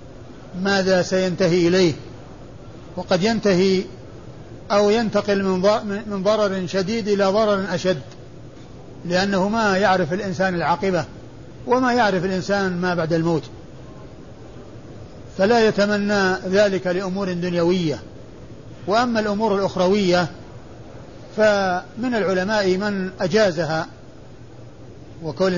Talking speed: 85 wpm